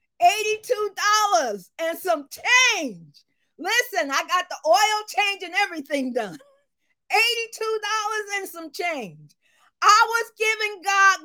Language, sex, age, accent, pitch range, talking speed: Russian, female, 40-59, American, 295-390 Hz, 105 wpm